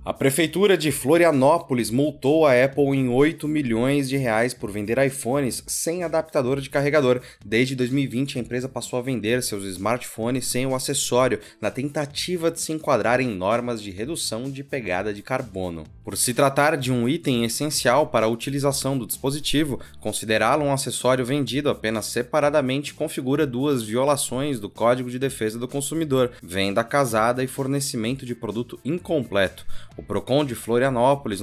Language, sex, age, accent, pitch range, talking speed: Portuguese, male, 20-39, Brazilian, 115-140 Hz, 155 wpm